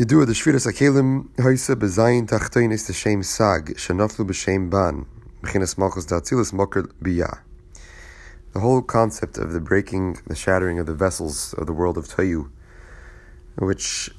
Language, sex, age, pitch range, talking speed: English, male, 30-49, 85-100 Hz, 70 wpm